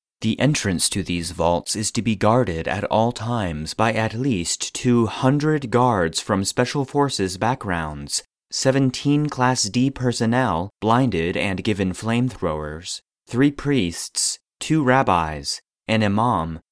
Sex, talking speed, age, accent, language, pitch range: male, 125 wpm, 30-49, American, English, 90-125 Hz